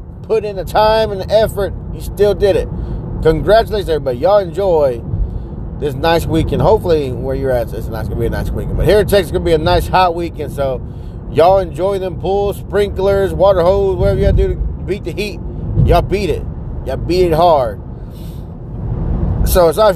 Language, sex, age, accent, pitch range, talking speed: English, male, 30-49, American, 125-195 Hz, 215 wpm